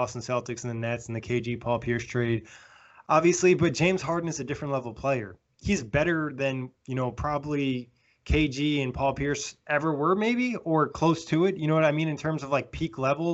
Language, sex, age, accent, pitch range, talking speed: English, male, 20-39, American, 125-150 Hz, 215 wpm